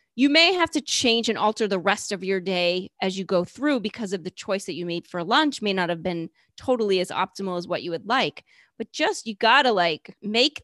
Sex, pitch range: female, 175-235 Hz